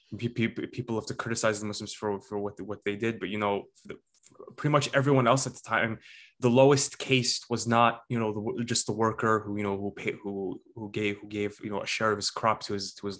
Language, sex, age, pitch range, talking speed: English, male, 20-39, 105-125 Hz, 255 wpm